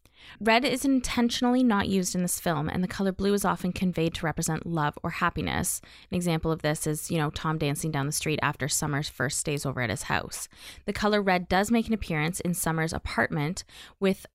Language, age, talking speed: English, 20-39, 215 wpm